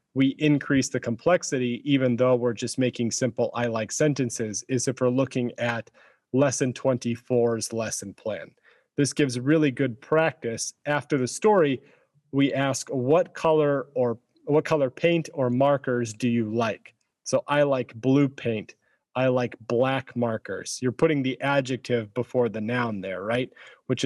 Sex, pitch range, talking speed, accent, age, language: male, 115-140 Hz, 155 wpm, American, 40-59, English